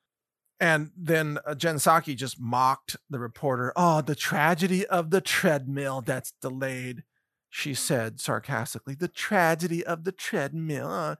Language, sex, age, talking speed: English, male, 40-59, 125 wpm